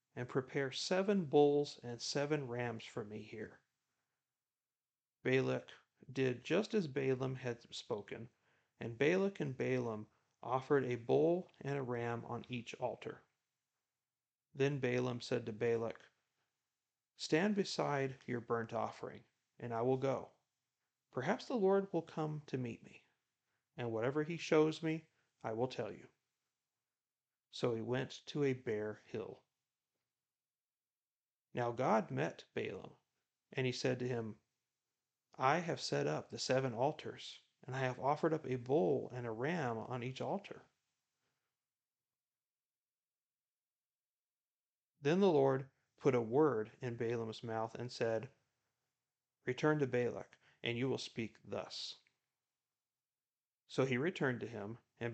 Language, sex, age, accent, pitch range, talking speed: English, male, 40-59, American, 120-140 Hz, 135 wpm